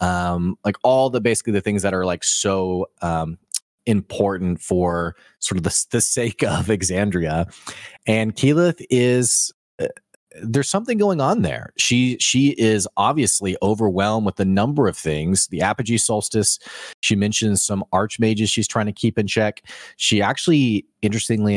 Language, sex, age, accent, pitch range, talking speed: English, male, 30-49, American, 90-110 Hz, 155 wpm